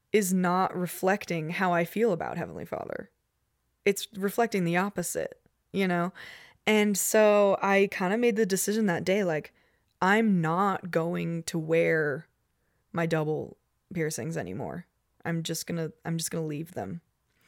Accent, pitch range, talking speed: American, 170-210 Hz, 155 wpm